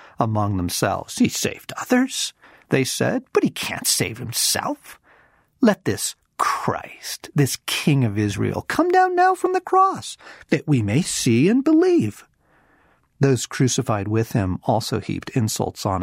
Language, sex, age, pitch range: English, male, 50-69, 105-130 Hz